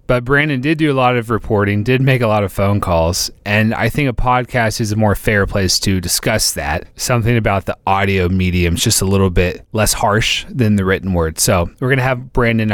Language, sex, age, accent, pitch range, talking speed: English, male, 30-49, American, 100-120 Hz, 235 wpm